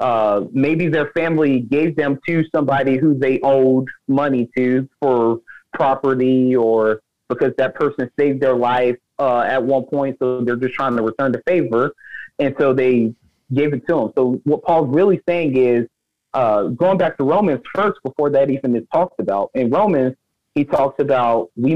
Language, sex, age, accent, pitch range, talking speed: English, male, 30-49, American, 120-145 Hz, 180 wpm